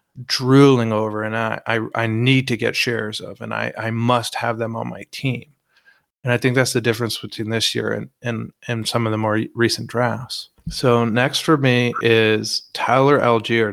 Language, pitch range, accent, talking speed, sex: English, 110-130 Hz, American, 195 wpm, male